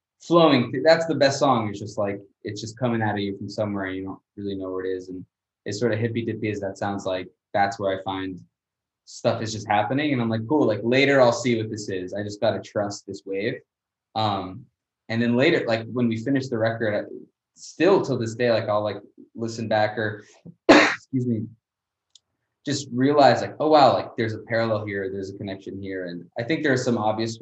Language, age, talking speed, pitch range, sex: English, 20-39, 220 wpm, 100-120 Hz, male